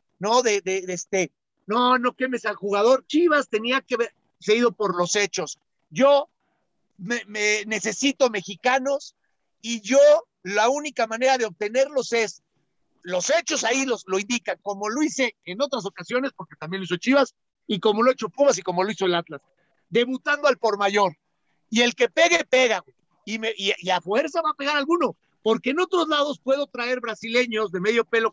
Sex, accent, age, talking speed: male, Mexican, 50-69, 185 wpm